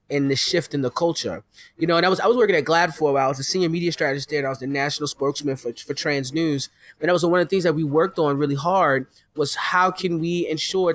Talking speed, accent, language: 295 wpm, American, English